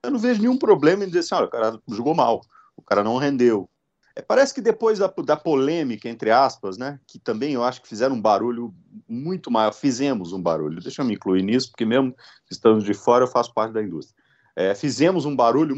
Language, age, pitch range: Portuguese, 40-59, 115-175 Hz